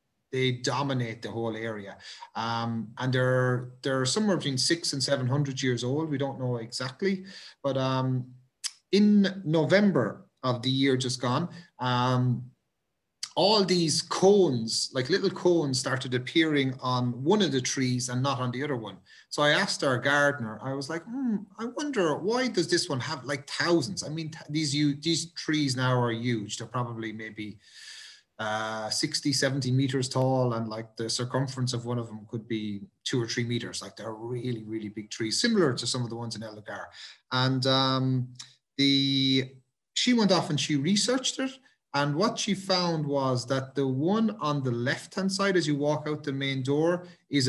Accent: Irish